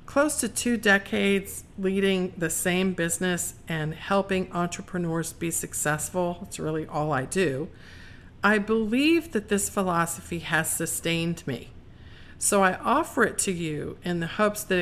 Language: English